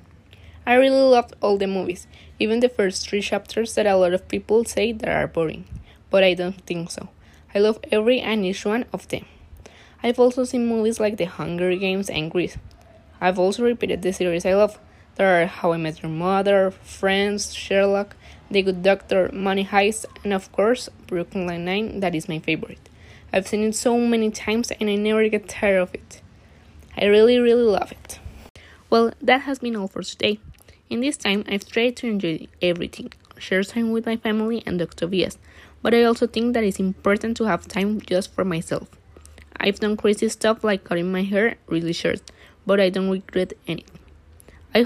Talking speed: 190 wpm